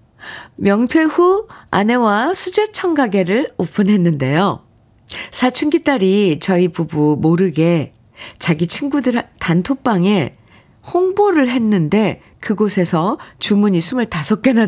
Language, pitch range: Korean, 150-210 Hz